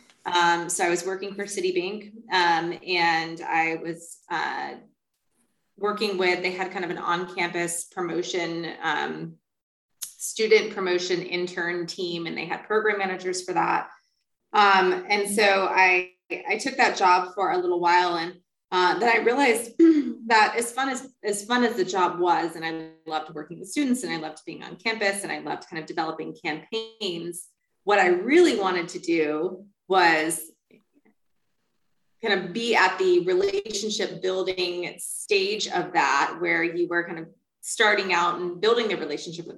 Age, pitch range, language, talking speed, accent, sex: 20-39, 175-230 Hz, English, 165 wpm, American, female